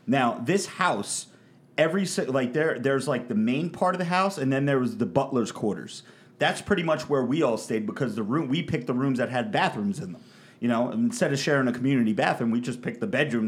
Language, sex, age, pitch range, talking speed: English, male, 30-49, 120-155 Hz, 235 wpm